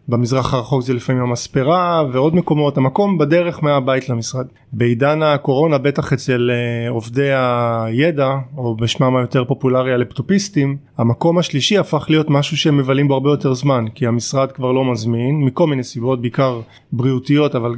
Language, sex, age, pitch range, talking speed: Hebrew, male, 20-39, 125-145 Hz, 150 wpm